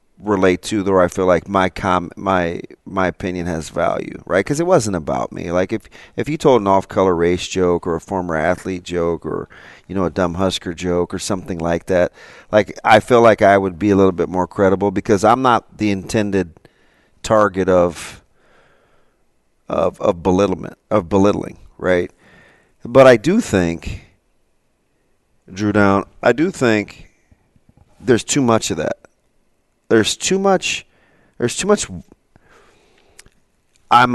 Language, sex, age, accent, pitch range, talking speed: English, male, 40-59, American, 90-110 Hz, 160 wpm